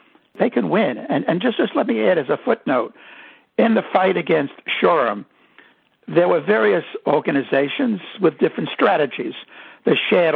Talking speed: 155 wpm